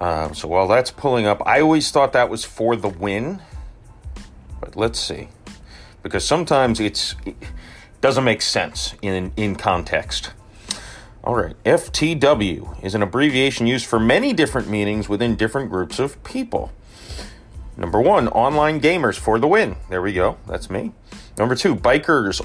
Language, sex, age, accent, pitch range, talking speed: English, male, 40-59, American, 95-145 Hz, 155 wpm